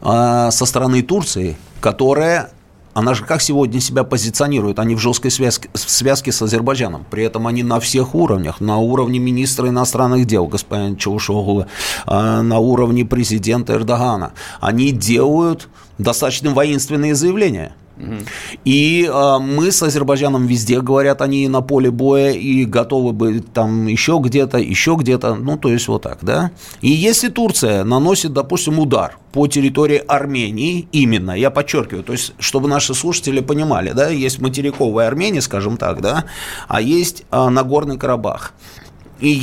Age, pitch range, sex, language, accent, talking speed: 30-49, 115-145 Hz, male, Russian, native, 145 wpm